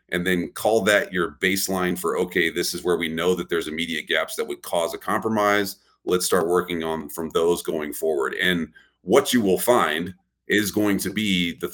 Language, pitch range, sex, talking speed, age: English, 85-100 Hz, male, 205 wpm, 40-59